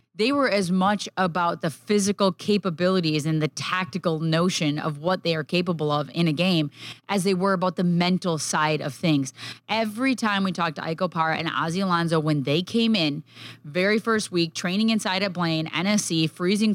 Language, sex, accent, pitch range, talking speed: English, female, American, 160-190 Hz, 190 wpm